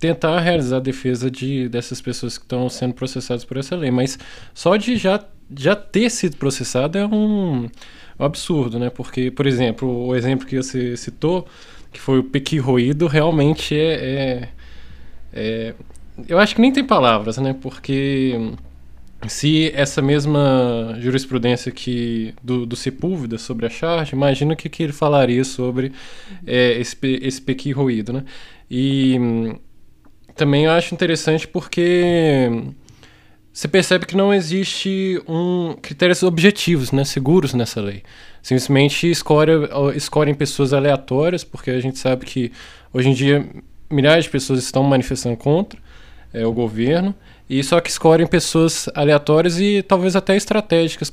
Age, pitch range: 20-39, 125-165 Hz